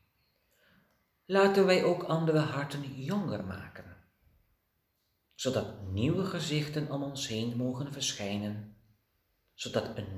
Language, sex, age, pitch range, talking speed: Dutch, male, 40-59, 100-140 Hz, 100 wpm